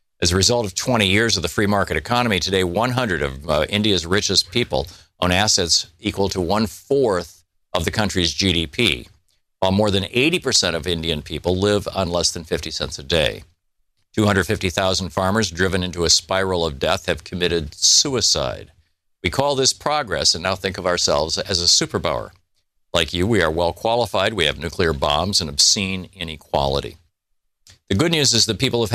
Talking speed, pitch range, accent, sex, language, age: 175 wpm, 85-105 Hz, American, male, English, 50-69